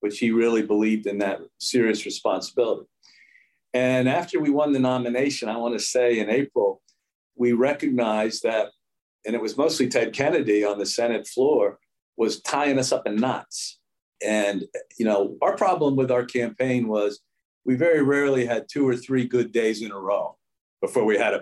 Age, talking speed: 50-69, 180 wpm